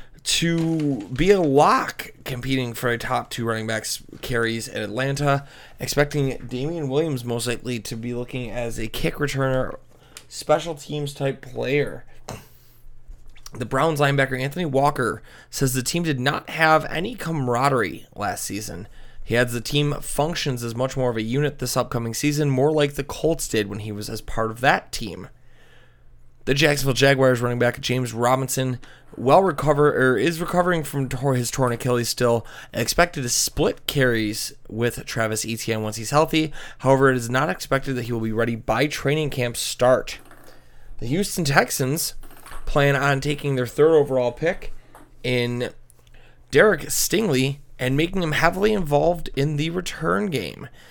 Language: English